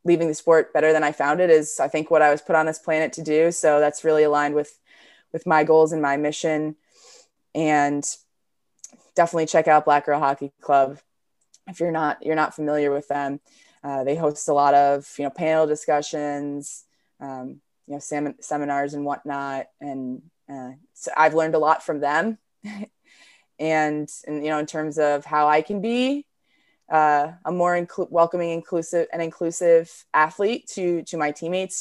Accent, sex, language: American, female, English